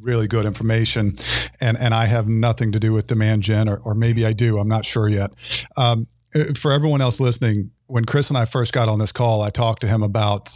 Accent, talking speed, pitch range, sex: American, 235 wpm, 110-125 Hz, male